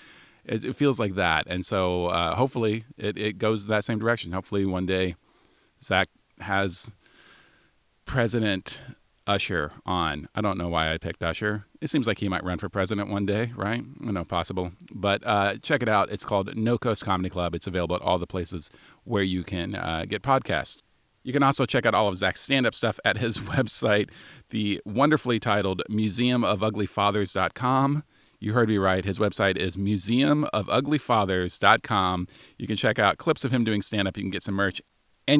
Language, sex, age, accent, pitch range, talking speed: English, male, 40-59, American, 95-120 Hz, 185 wpm